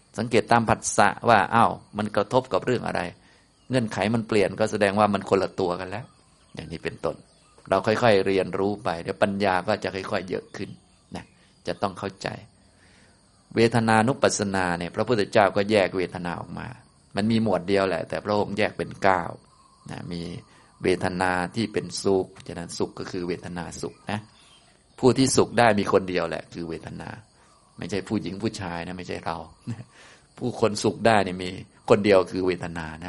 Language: Thai